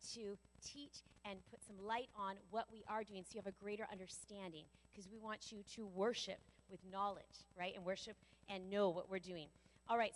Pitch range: 190-235 Hz